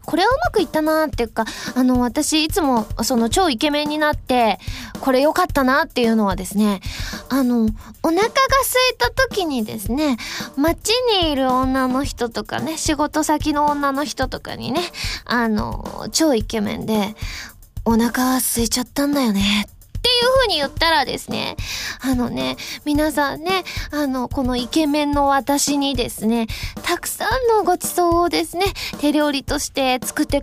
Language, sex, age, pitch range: Japanese, female, 20-39, 250-370 Hz